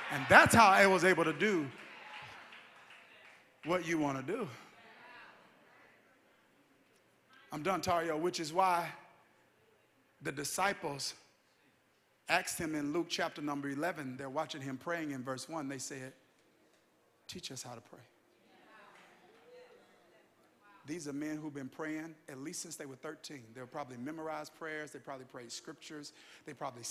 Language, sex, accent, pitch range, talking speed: English, male, American, 130-160 Hz, 145 wpm